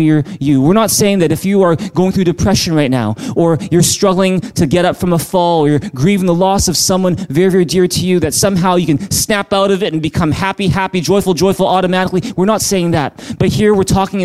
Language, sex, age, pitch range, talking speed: English, male, 20-39, 160-200 Hz, 240 wpm